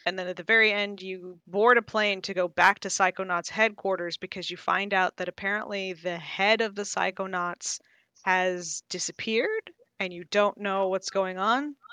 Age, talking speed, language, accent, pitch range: 20-39, 180 wpm, English, American, 175-220 Hz